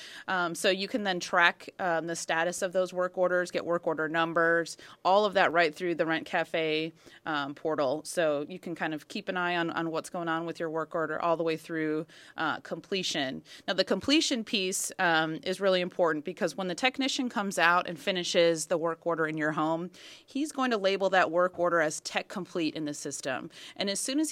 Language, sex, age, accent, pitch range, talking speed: English, female, 30-49, American, 160-195 Hz, 220 wpm